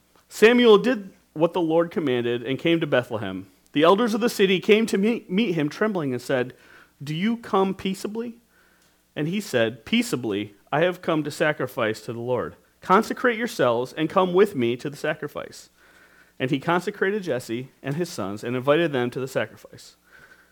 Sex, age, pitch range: male, 40-59, 125-175 Hz